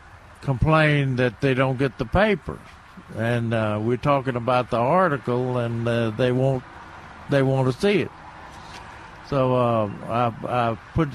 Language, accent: English, American